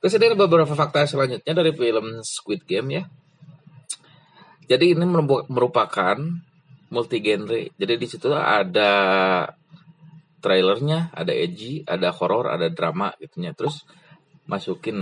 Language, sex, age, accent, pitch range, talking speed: Indonesian, male, 20-39, native, 125-170 Hz, 115 wpm